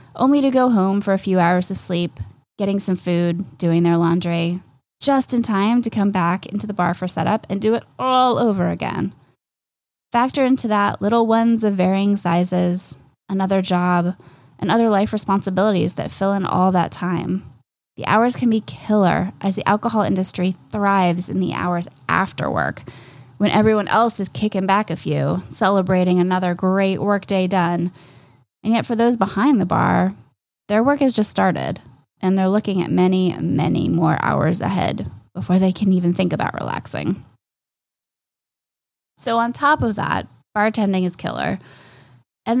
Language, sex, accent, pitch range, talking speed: English, female, American, 175-215 Hz, 165 wpm